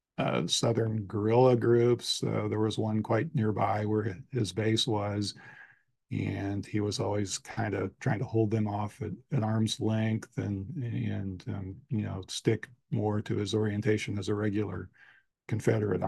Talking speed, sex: 160 wpm, male